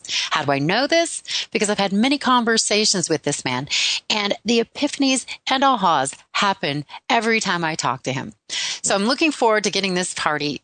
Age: 30-49